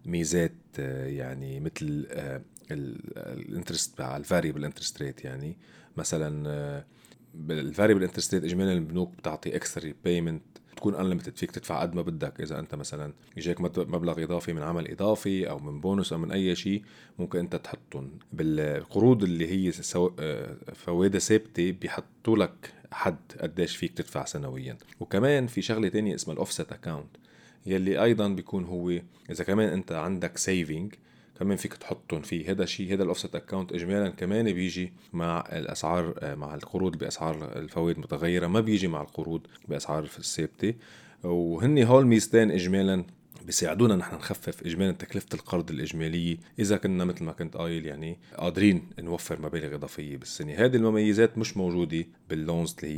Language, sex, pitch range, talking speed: Arabic, male, 80-100 Hz, 140 wpm